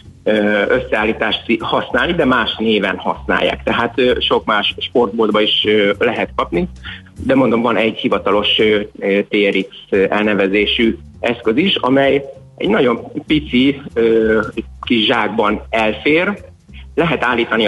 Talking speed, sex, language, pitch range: 100 wpm, male, Hungarian, 100-135 Hz